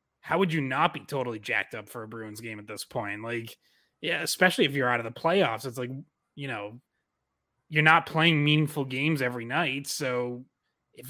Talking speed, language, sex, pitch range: 200 wpm, English, male, 120-150 Hz